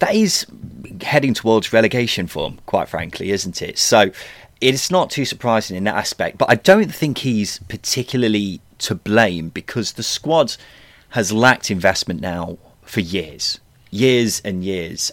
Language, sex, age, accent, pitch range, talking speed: English, male, 30-49, British, 95-120 Hz, 150 wpm